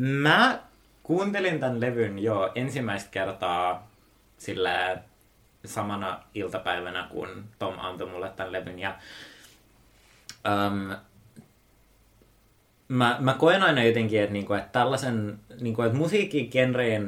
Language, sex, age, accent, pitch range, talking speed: Finnish, male, 30-49, native, 100-120 Hz, 100 wpm